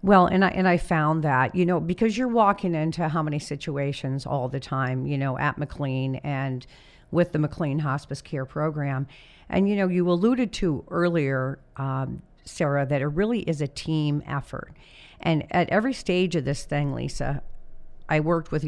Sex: female